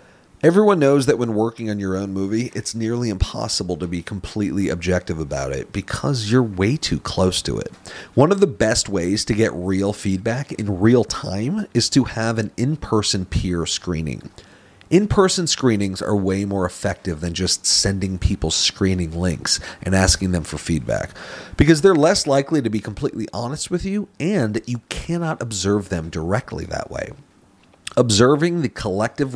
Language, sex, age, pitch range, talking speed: English, male, 40-59, 90-120 Hz, 170 wpm